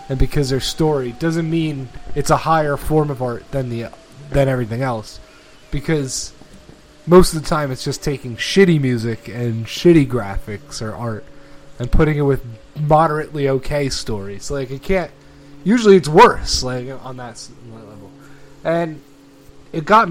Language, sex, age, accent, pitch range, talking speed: English, male, 20-39, American, 125-155 Hz, 155 wpm